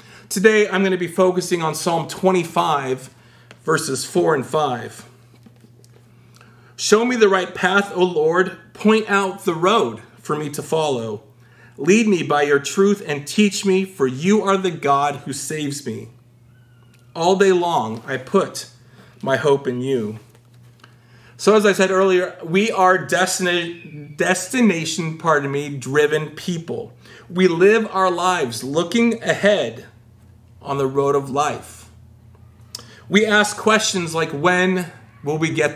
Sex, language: male, English